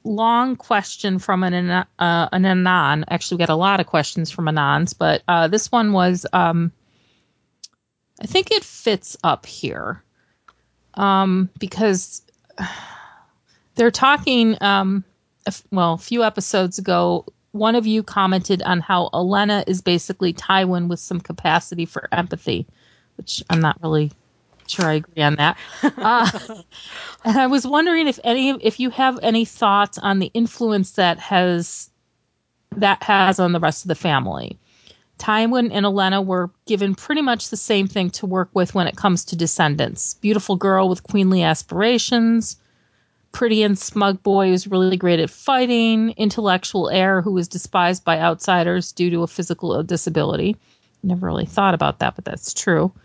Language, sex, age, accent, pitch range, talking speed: English, female, 30-49, American, 175-215 Hz, 155 wpm